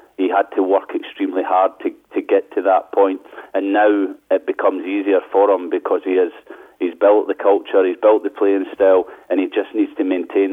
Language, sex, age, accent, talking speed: English, male, 40-59, British, 210 wpm